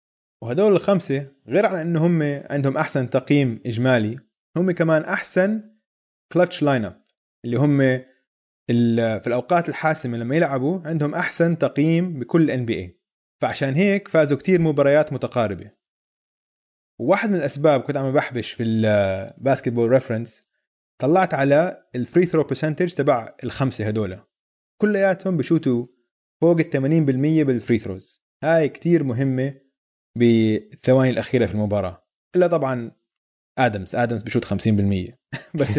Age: 20-39